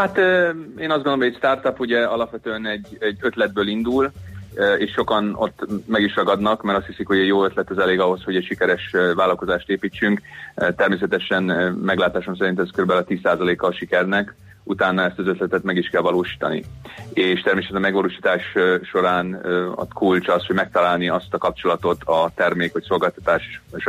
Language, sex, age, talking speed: Hungarian, male, 30-49, 175 wpm